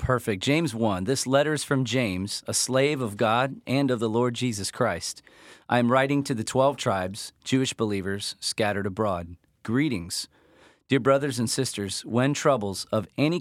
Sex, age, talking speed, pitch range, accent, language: male, 40-59, 170 wpm, 100-130 Hz, American, English